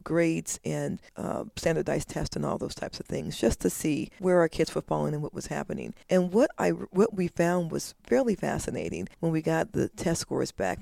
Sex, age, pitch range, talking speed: female, 40-59, 150-185 Hz, 215 wpm